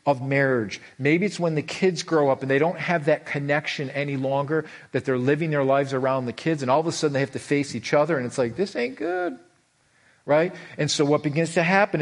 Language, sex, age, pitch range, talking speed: English, male, 40-59, 140-185 Hz, 245 wpm